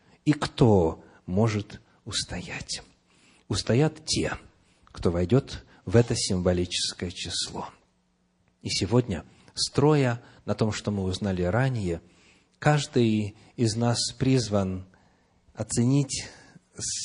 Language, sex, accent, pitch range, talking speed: Russian, male, native, 95-130 Hz, 90 wpm